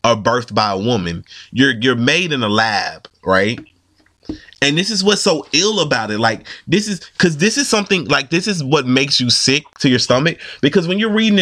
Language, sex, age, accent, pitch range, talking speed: English, male, 30-49, American, 115-165 Hz, 215 wpm